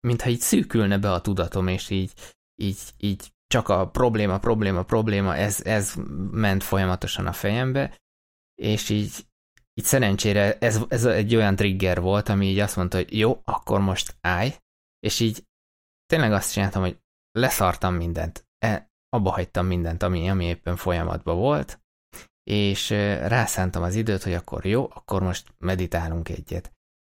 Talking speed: 150 wpm